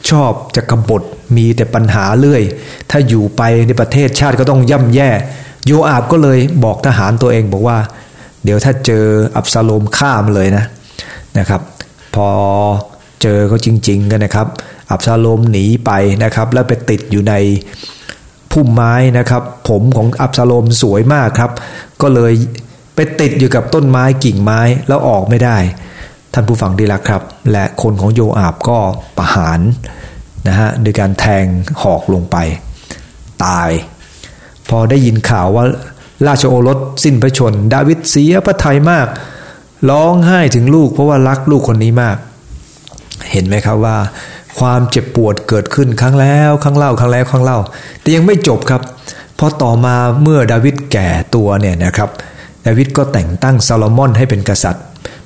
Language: English